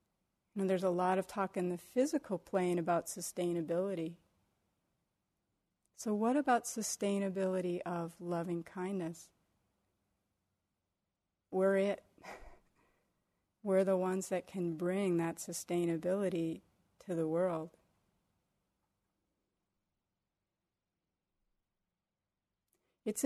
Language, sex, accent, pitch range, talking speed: English, female, American, 170-210 Hz, 85 wpm